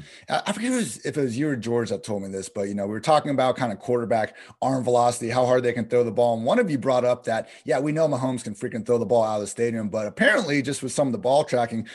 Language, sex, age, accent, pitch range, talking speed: English, male, 30-49, American, 115-145 Hz, 305 wpm